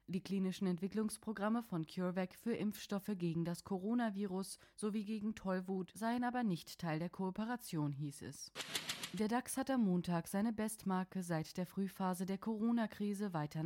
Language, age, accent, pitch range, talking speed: German, 20-39, German, 170-215 Hz, 150 wpm